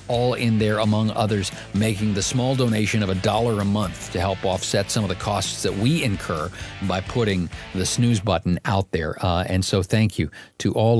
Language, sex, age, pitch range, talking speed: English, male, 50-69, 90-110 Hz, 205 wpm